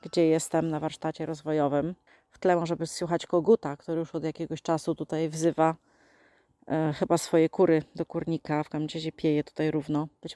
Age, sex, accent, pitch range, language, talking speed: 30-49, female, native, 155-175 Hz, Polish, 175 wpm